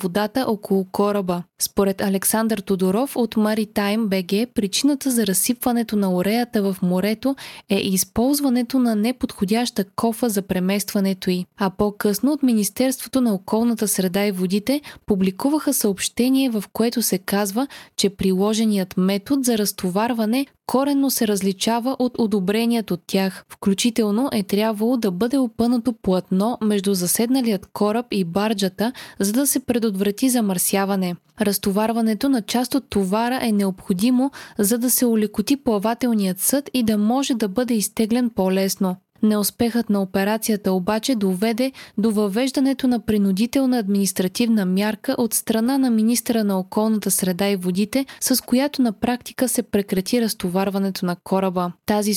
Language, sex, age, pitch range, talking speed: Bulgarian, female, 20-39, 200-245 Hz, 135 wpm